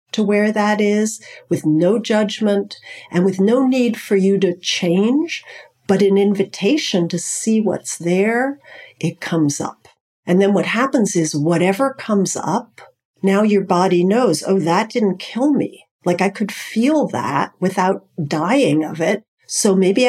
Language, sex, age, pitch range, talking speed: English, female, 50-69, 175-220 Hz, 160 wpm